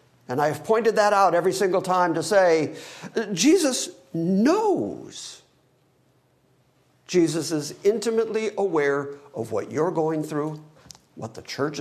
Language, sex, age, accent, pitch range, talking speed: English, male, 60-79, American, 155-225 Hz, 125 wpm